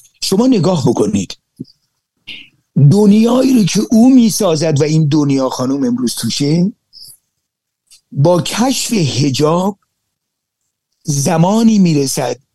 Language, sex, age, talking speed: Persian, male, 50-69, 90 wpm